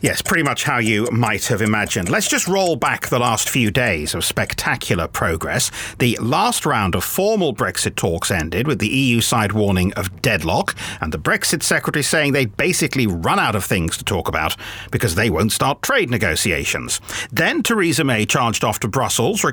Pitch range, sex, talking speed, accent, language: 105-165 Hz, male, 190 wpm, British, English